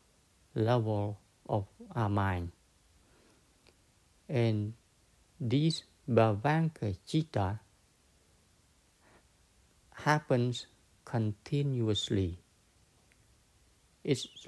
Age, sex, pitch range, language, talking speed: 60-79, male, 100-125 Hz, English, 45 wpm